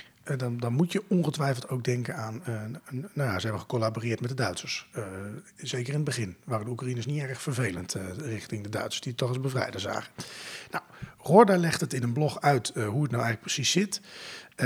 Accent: Dutch